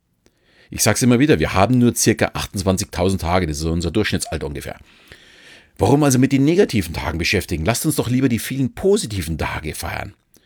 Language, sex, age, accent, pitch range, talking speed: German, male, 40-59, German, 90-125 Hz, 180 wpm